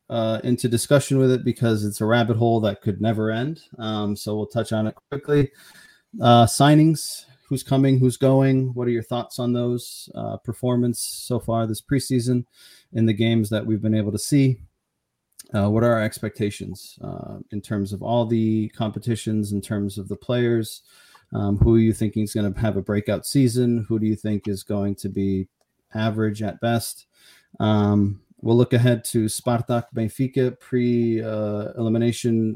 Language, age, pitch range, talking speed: English, 30-49, 105-125 Hz, 180 wpm